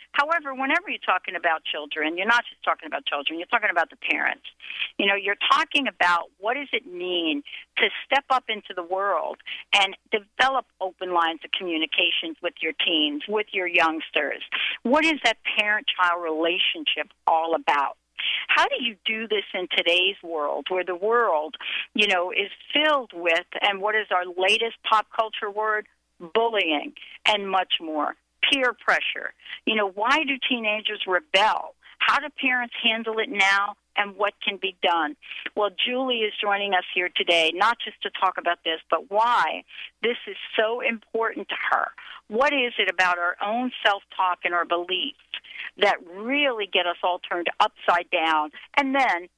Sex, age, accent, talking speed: female, 50-69, American, 170 wpm